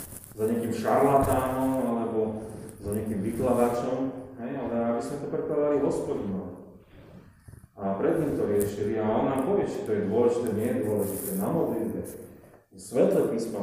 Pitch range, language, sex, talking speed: 110-150 Hz, Slovak, male, 135 wpm